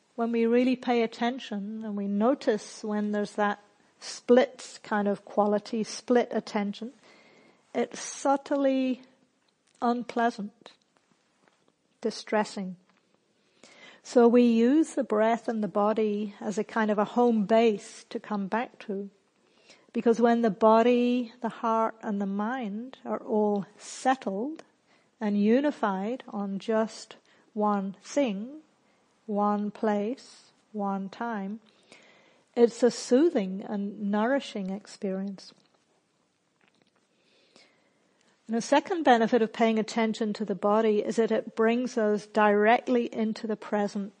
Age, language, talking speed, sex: 50-69, English, 115 wpm, female